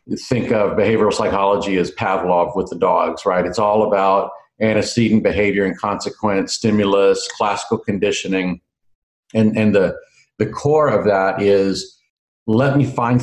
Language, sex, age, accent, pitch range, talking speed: English, male, 50-69, American, 100-125 Hz, 140 wpm